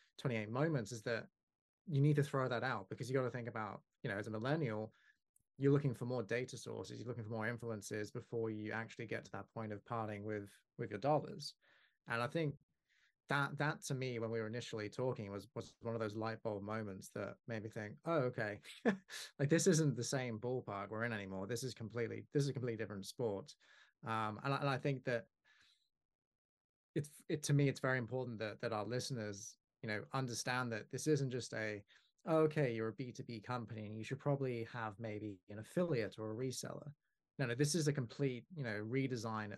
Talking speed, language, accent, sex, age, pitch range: 215 wpm, English, British, male, 20-39, 110-135 Hz